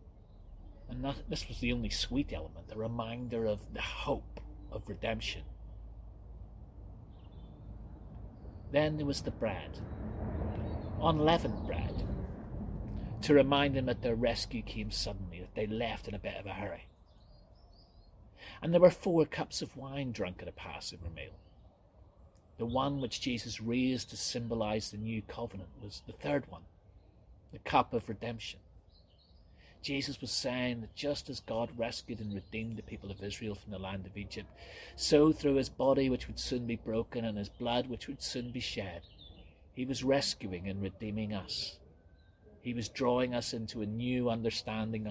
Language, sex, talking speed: English, male, 155 wpm